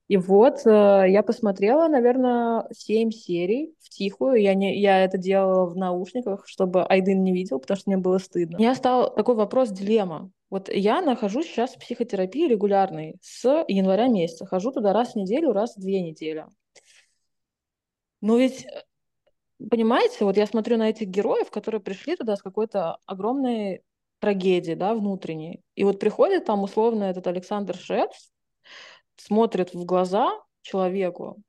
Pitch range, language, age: 190-230 Hz, Russian, 20-39